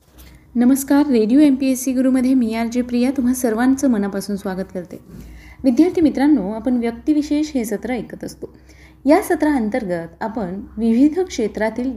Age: 20-39